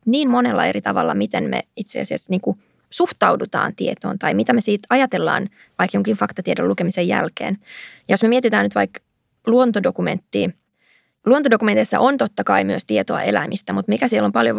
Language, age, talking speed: Finnish, 20-39, 155 wpm